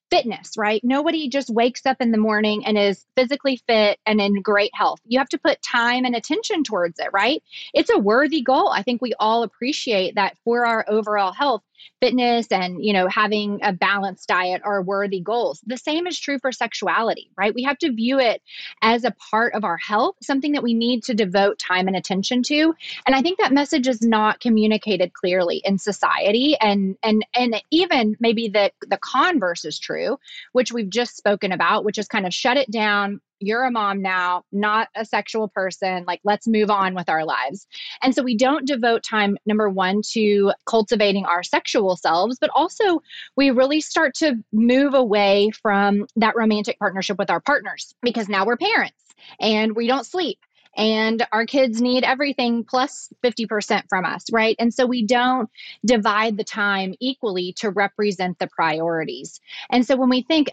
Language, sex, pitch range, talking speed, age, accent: English, female, 200-255 Hz, 190 wpm, 30-49, American